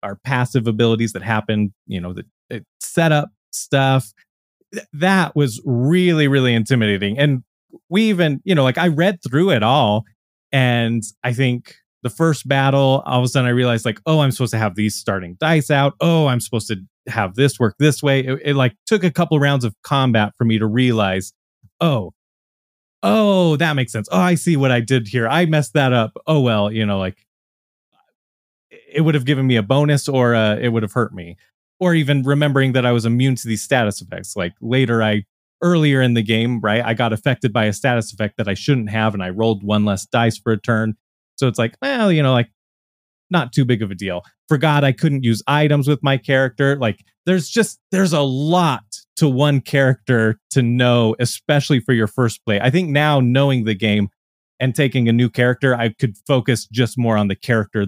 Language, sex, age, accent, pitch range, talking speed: English, male, 30-49, American, 110-145 Hz, 210 wpm